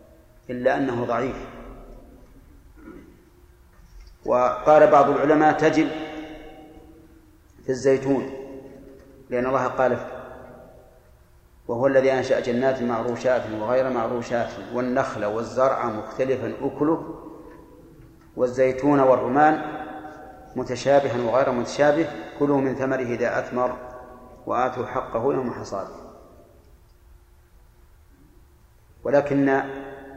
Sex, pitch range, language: male, 125-145 Hz, Arabic